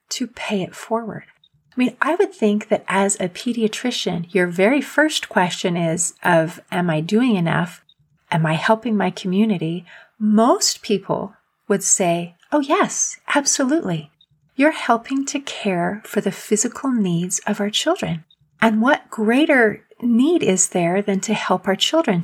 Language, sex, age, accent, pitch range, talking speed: English, female, 30-49, American, 175-225 Hz, 155 wpm